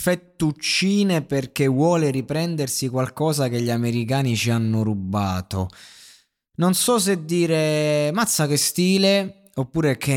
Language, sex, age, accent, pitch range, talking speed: Italian, male, 20-39, native, 115-155 Hz, 120 wpm